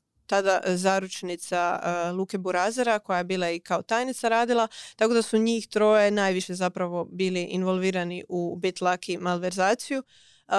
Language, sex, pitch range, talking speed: Croatian, female, 180-215 Hz, 140 wpm